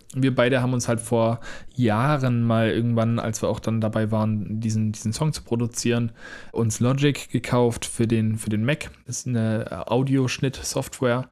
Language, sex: German, male